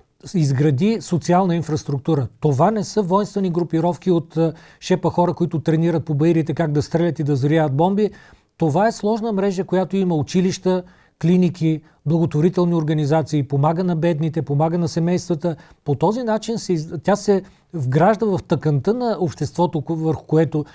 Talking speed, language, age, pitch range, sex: 150 wpm, Bulgarian, 40-59, 155-185 Hz, male